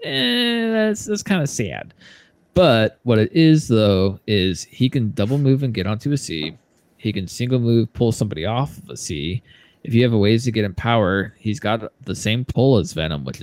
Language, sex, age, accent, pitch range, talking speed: English, male, 20-39, American, 100-130 Hz, 215 wpm